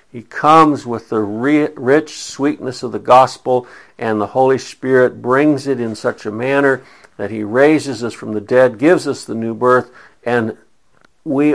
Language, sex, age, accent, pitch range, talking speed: English, male, 60-79, American, 110-130 Hz, 170 wpm